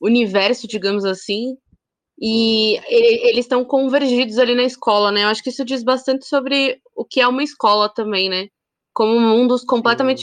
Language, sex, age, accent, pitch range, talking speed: Portuguese, female, 20-39, Brazilian, 205-255 Hz, 165 wpm